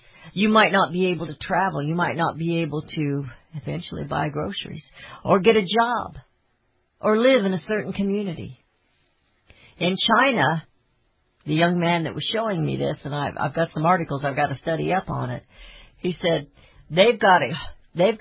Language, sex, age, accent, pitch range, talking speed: English, female, 60-79, American, 140-215 Hz, 180 wpm